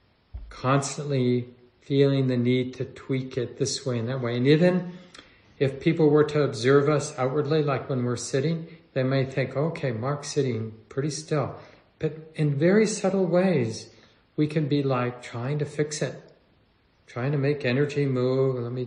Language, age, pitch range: English, 50-69, 115-140 Hz